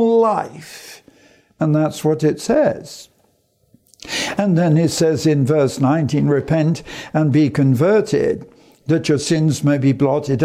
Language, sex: English, male